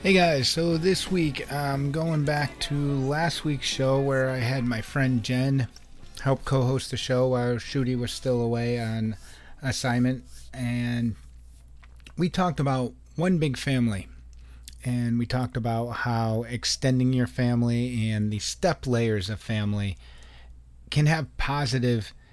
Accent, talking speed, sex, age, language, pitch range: American, 140 wpm, male, 30-49, English, 105-135 Hz